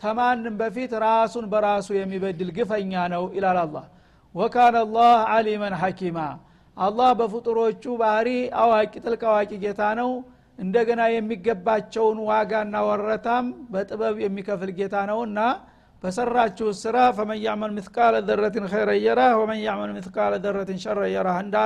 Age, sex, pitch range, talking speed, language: 60-79, male, 200-235 Hz, 115 wpm, Amharic